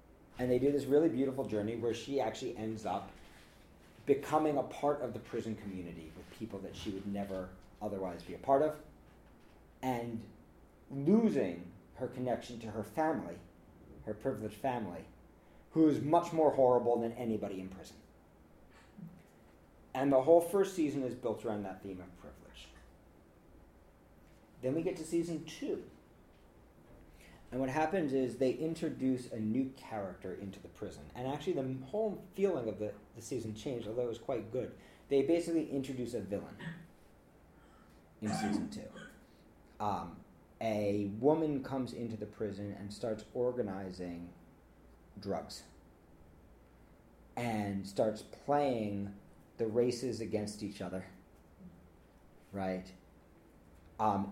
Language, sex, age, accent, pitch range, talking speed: English, male, 40-59, American, 90-130 Hz, 135 wpm